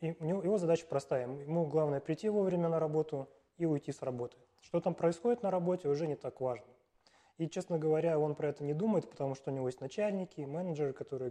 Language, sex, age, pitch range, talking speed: Russian, male, 20-39, 135-160 Hz, 205 wpm